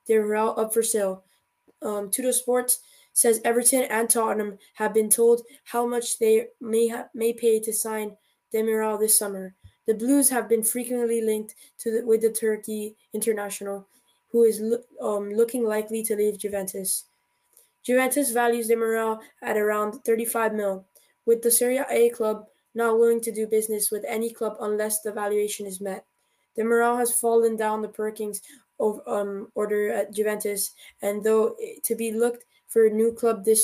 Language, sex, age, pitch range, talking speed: English, female, 10-29, 210-235 Hz, 170 wpm